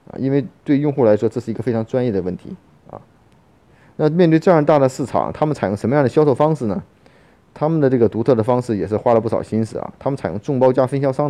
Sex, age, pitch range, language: male, 30-49, 110-140 Hz, Chinese